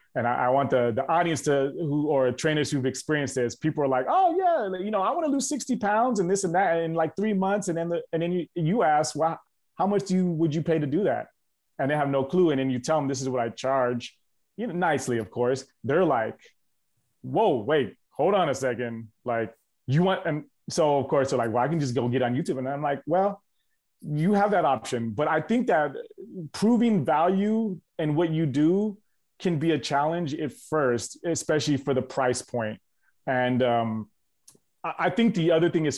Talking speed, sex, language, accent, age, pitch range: 225 wpm, male, English, American, 30-49, 125-170 Hz